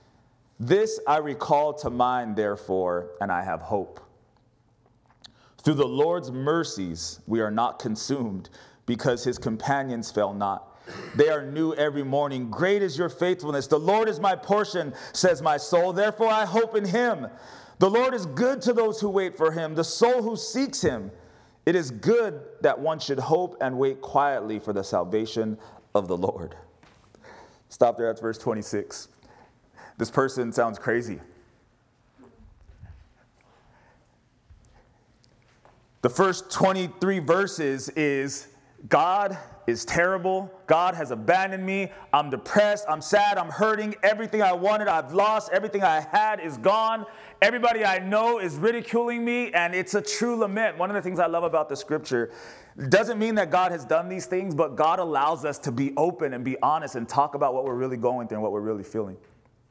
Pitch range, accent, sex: 120-200 Hz, American, male